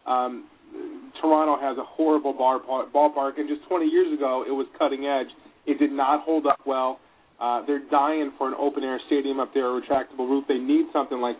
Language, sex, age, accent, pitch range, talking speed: English, male, 30-49, American, 130-165 Hz, 205 wpm